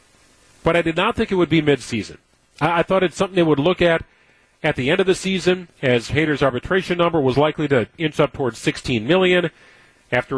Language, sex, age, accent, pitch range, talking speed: English, male, 40-59, American, 125-165 Hz, 210 wpm